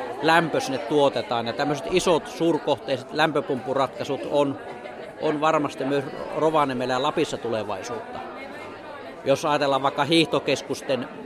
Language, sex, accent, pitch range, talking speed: Finnish, male, native, 130-155 Hz, 105 wpm